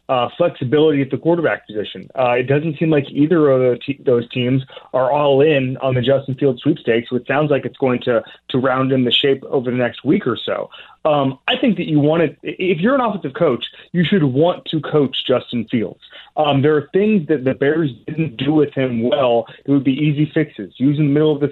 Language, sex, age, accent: English, male, 30-49, American